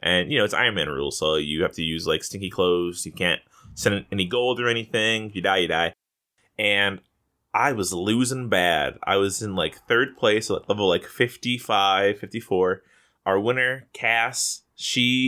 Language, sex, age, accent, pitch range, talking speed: English, male, 20-39, American, 105-145 Hz, 180 wpm